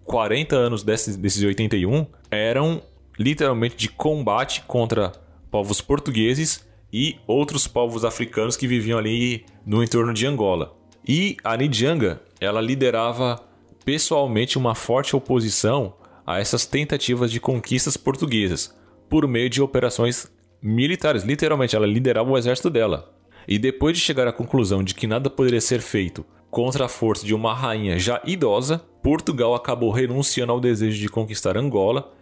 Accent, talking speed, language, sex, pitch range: Brazilian, 140 wpm, Portuguese, male, 105-130 Hz